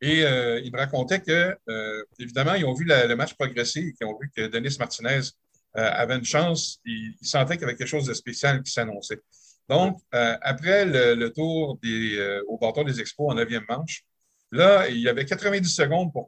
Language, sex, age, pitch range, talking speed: French, male, 50-69, 120-155 Hz, 220 wpm